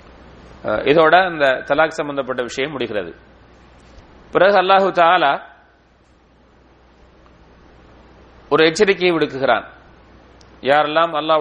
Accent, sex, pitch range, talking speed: Indian, male, 120-165 Hz, 75 wpm